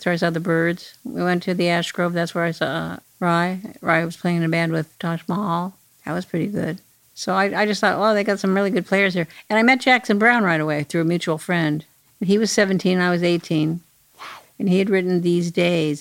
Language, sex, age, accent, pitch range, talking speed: English, female, 50-69, American, 170-205 Hz, 245 wpm